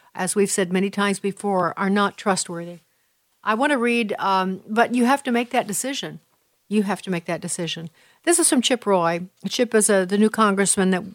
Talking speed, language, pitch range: 210 wpm, English, 185-235 Hz